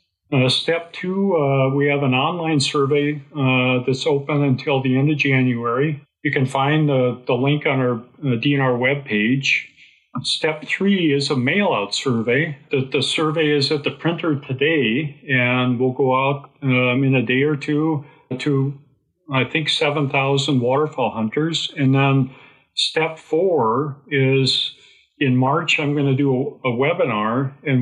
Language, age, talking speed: English, 50-69, 155 wpm